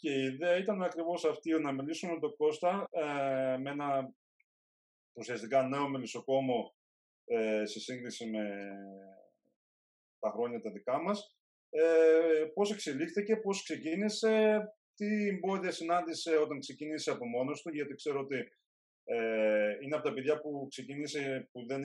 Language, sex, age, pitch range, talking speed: Greek, male, 30-49, 115-165 Hz, 130 wpm